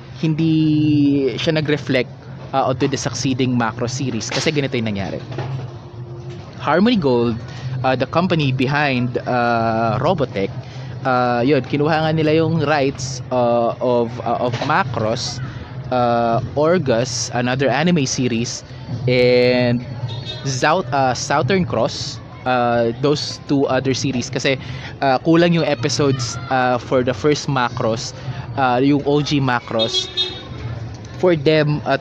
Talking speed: 115 wpm